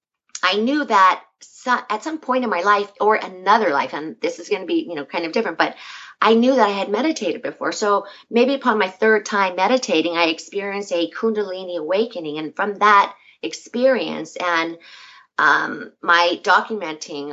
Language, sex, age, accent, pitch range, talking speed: English, female, 40-59, American, 170-225 Hz, 175 wpm